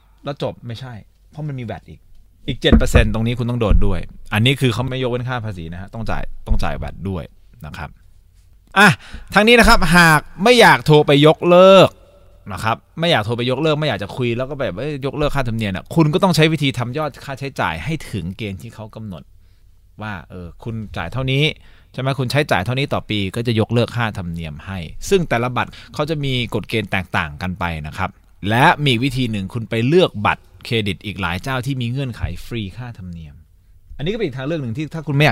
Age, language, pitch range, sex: 20-39, Thai, 90-130 Hz, male